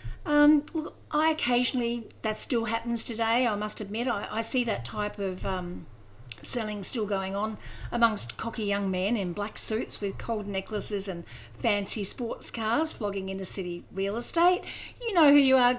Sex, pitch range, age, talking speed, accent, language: female, 190-255 Hz, 50-69, 170 wpm, Australian, English